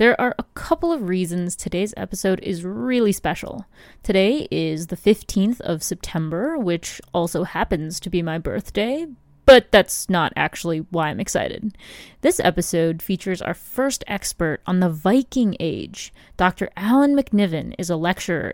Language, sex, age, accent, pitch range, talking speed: English, female, 20-39, American, 175-220 Hz, 150 wpm